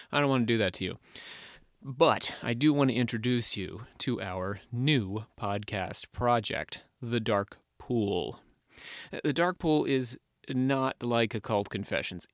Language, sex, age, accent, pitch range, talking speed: English, male, 30-49, American, 110-135 Hz, 150 wpm